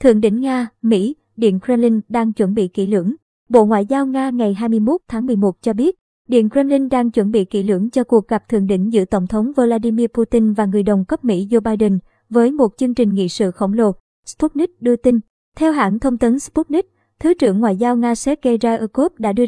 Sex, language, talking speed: male, Vietnamese, 215 wpm